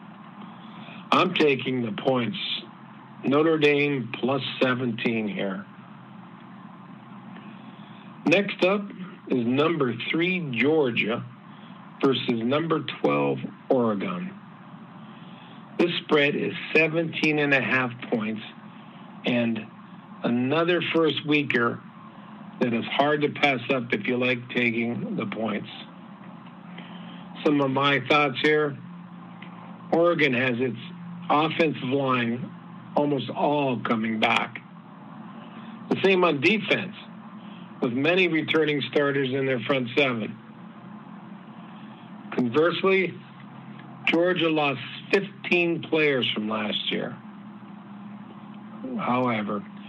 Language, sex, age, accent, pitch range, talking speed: English, male, 50-69, American, 140-205 Hz, 90 wpm